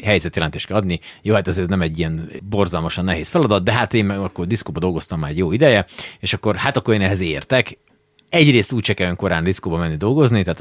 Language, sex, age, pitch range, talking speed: Hungarian, male, 30-49, 85-125 Hz, 210 wpm